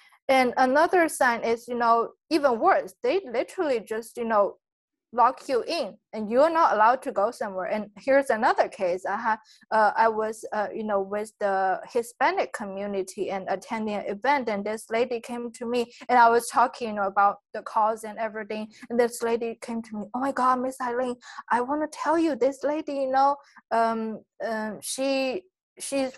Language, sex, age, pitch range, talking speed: English, female, 20-39, 220-275 Hz, 195 wpm